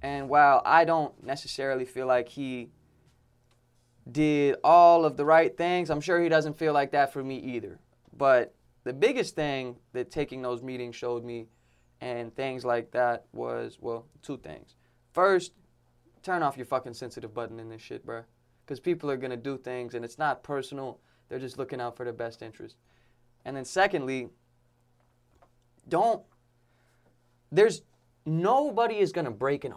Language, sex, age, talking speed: English, male, 20-39, 165 wpm